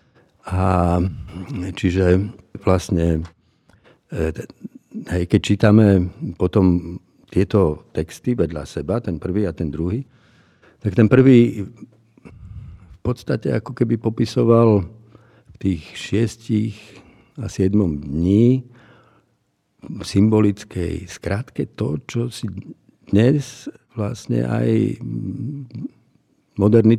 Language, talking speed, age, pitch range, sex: Slovak, 90 wpm, 60-79, 90-110 Hz, male